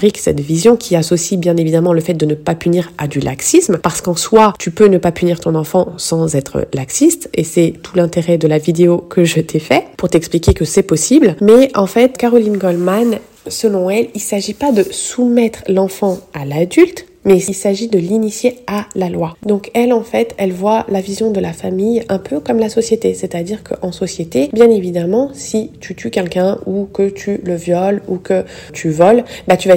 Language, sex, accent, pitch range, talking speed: French, female, French, 170-210 Hz, 210 wpm